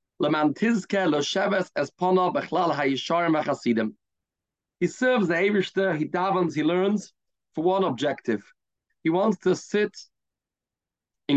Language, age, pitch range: English, 40-59, 145-190 Hz